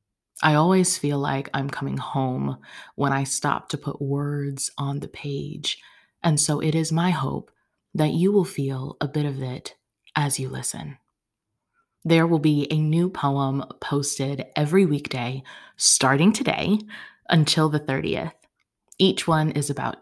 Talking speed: 155 wpm